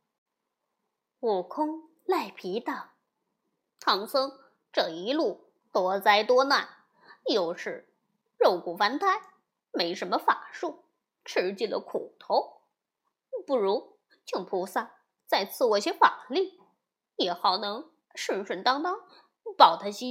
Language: Chinese